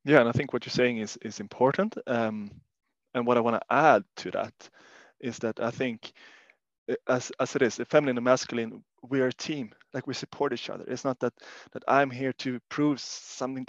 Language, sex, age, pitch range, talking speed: English, male, 20-39, 115-130 Hz, 215 wpm